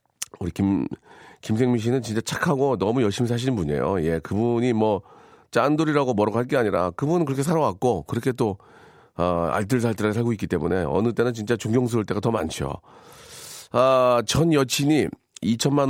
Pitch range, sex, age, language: 95-130 Hz, male, 40-59, Korean